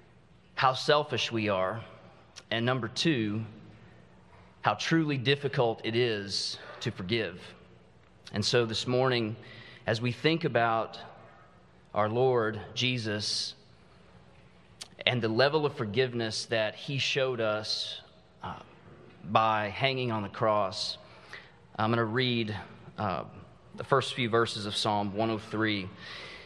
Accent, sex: American, male